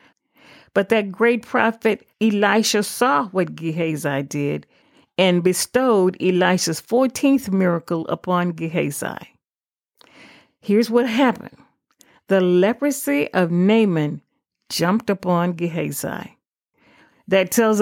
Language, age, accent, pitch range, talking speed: English, 50-69, American, 180-235 Hz, 95 wpm